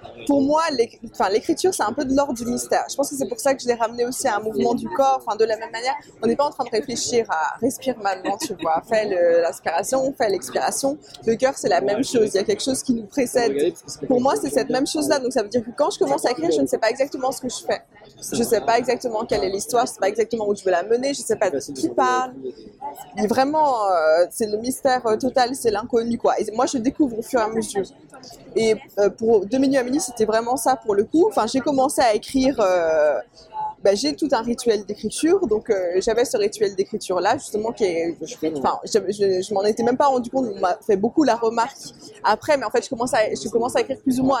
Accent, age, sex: French, 20-39, female